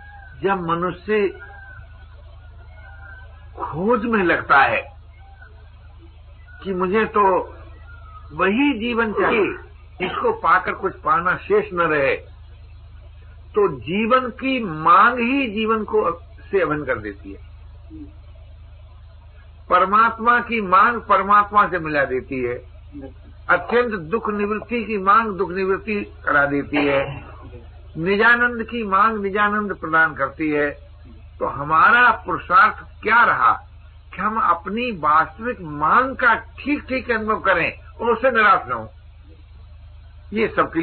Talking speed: 115 wpm